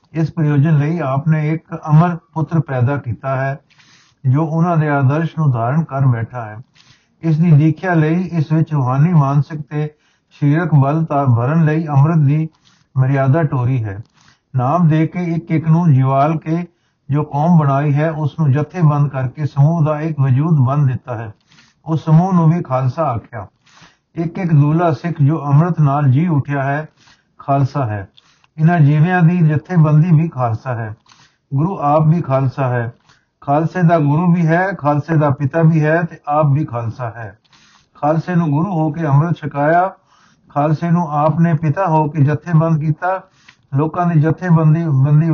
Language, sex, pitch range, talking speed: Punjabi, male, 140-160 Hz, 170 wpm